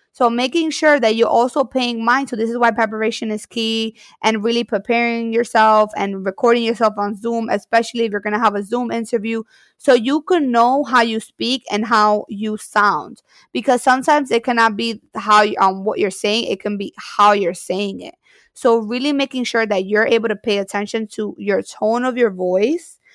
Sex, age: female, 20-39